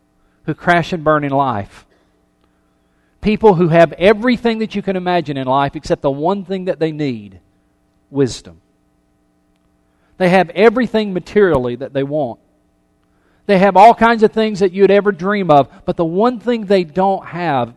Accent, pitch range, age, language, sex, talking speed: American, 120-185 Hz, 40-59, English, male, 170 wpm